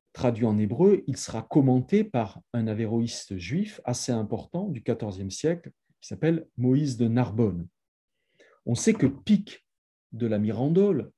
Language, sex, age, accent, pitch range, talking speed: French, male, 40-59, French, 115-155 Hz, 145 wpm